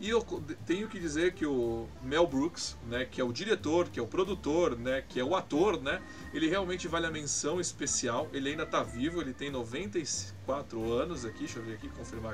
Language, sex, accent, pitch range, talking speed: Portuguese, male, Brazilian, 130-185 Hz, 215 wpm